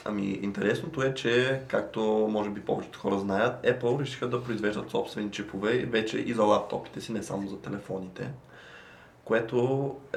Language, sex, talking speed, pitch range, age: Bulgarian, male, 160 wpm, 105-120 Hz, 20-39